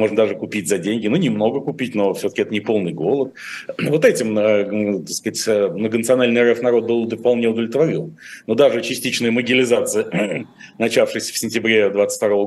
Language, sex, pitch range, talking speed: Russian, male, 110-130 Hz, 155 wpm